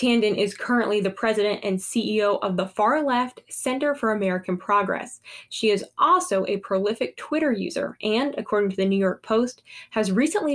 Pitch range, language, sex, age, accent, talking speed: 195-245 Hz, English, female, 10-29, American, 170 wpm